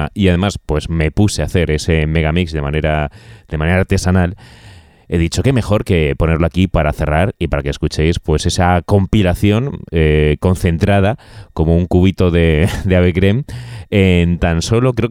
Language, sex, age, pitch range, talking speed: English, male, 30-49, 85-105 Hz, 170 wpm